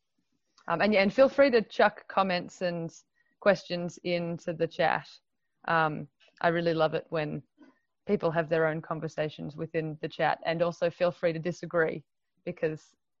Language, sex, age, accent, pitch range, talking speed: English, female, 20-39, Australian, 160-185 Hz, 160 wpm